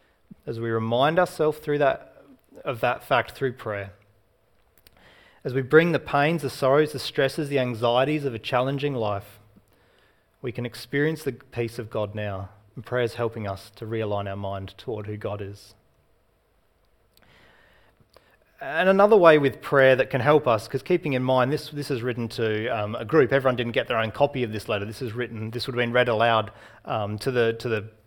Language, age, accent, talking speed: English, 30-49, Australian, 195 wpm